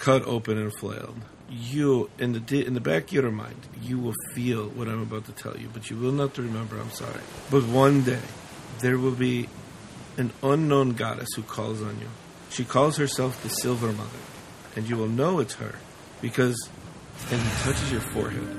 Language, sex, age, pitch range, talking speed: English, male, 50-69, 115-135 Hz, 195 wpm